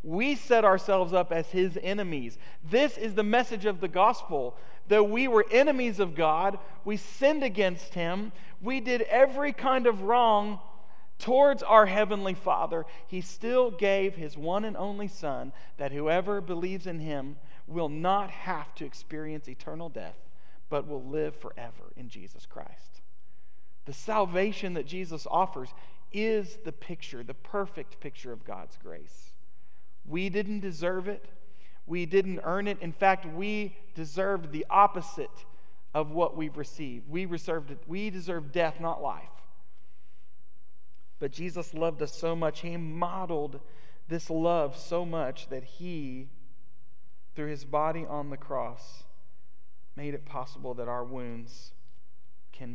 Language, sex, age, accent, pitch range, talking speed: English, male, 40-59, American, 140-195 Hz, 145 wpm